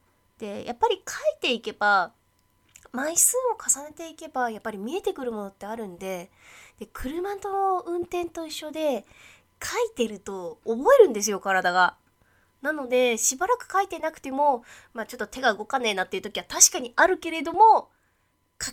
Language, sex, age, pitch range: Japanese, female, 20-39, 185-305 Hz